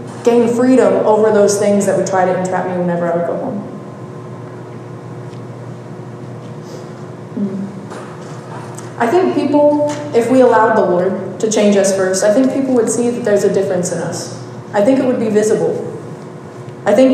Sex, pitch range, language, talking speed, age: female, 195-245 Hz, English, 165 wpm, 20-39